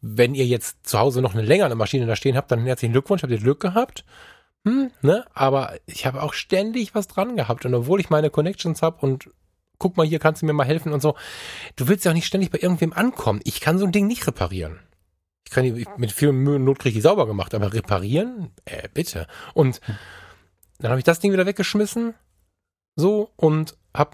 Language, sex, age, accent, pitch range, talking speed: German, male, 10-29, German, 120-150 Hz, 220 wpm